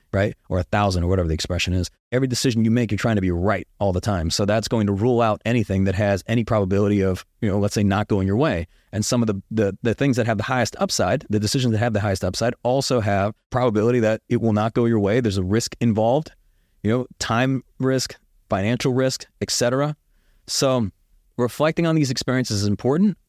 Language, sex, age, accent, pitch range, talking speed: English, male, 30-49, American, 100-120 Hz, 230 wpm